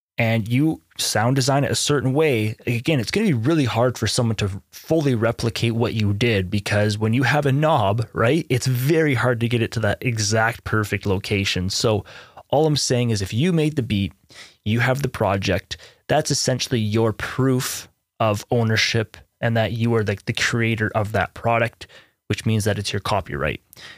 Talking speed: 195 wpm